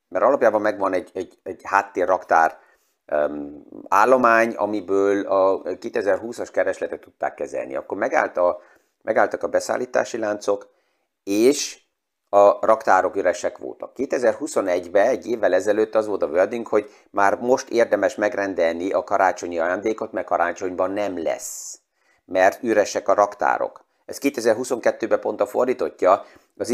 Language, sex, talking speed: Hungarian, male, 125 wpm